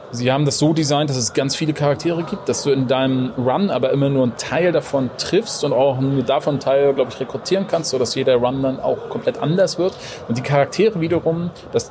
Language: German